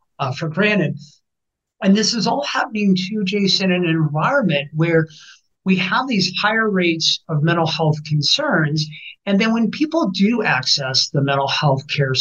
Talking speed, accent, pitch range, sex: 160 wpm, American, 140-185 Hz, male